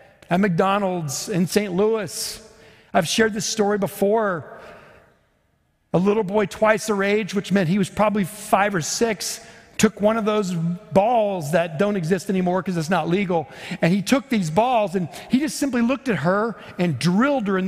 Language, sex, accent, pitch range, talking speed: English, male, American, 155-215 Hz, 180 wpm